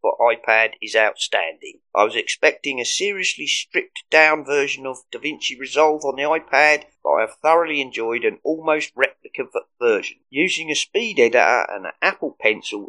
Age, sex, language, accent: 30-49, male, English, British